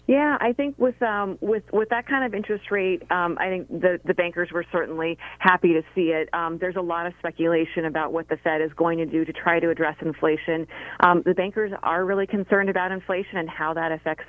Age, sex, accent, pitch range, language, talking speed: 40-59, female, American, 165-190 Hz, English, 230 wpm